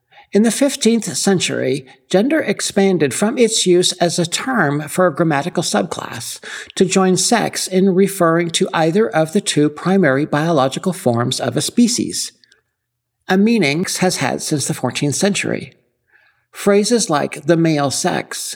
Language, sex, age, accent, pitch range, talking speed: English, male, 60-79, American, 145-195 Hz, 145 wpm